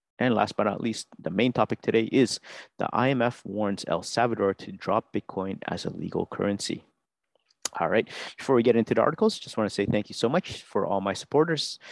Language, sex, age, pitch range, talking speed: English, male, 30-49, 105-125 Hz, 210 wpm